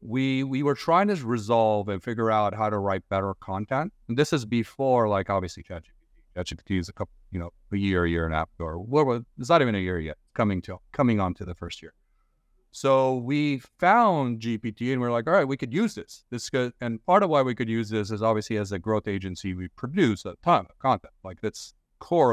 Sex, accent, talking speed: male, American, 240 wpm